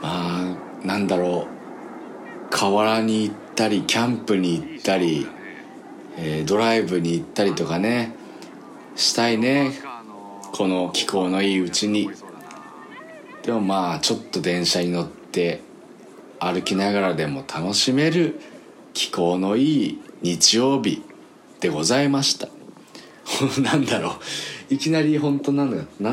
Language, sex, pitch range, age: Japanese, male, 90-130 Hz, 40-59